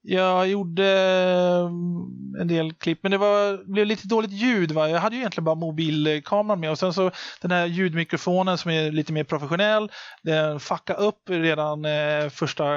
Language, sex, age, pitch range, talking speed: Swedish, male, 30-49, 160-200 Hz, 160 wpm